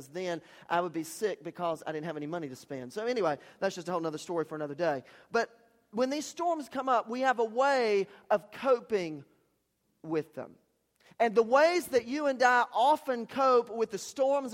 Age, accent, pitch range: 40-59, American, 200-255 Hz